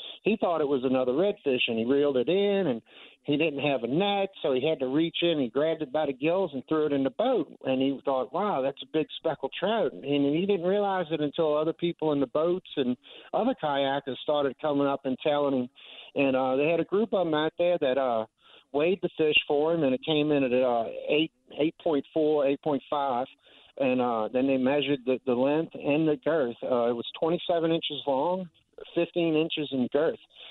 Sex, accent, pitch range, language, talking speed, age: male, American, 125-155 Hz, English, 220 wpm, 50-69